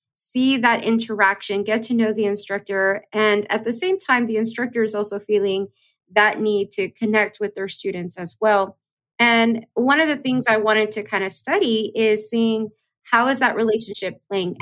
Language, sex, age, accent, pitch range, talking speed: English, female, 20-39, American, 195-225 Hz, 185 wpm